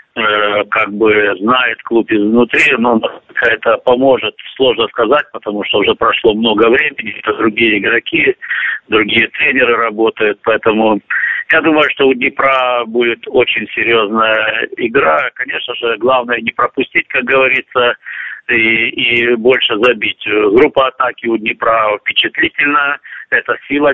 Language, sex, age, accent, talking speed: Russian, male, 50-69, native, 125 wpm